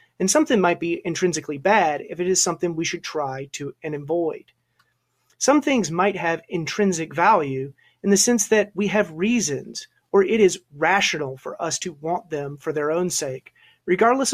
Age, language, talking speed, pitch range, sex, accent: 30-49, English, 180 wpm, 150-205 Hz, male, American